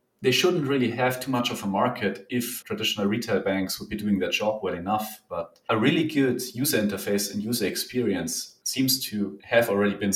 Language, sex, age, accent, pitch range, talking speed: English, male, 30-49, German, 100-125 Hz, 200 wpm